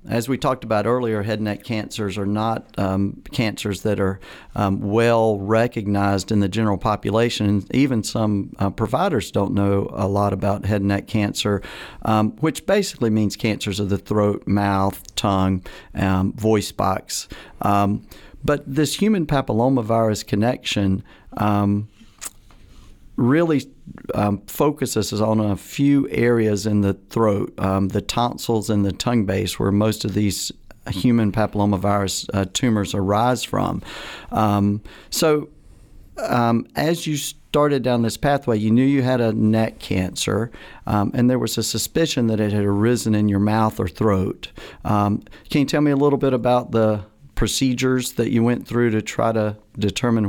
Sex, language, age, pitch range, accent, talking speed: male, English, 50-69, 100-120 Hz, American, 155 wpm